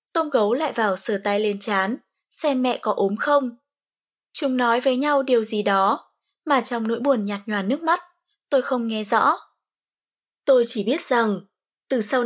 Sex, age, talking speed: female, 20-39, 185 wpm